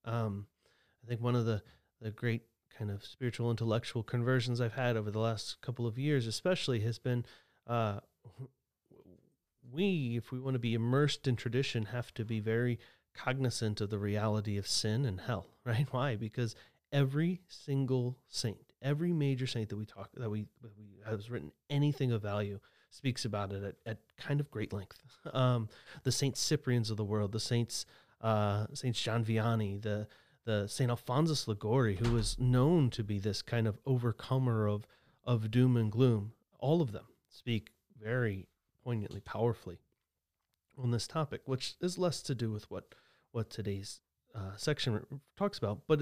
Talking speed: 170 wpm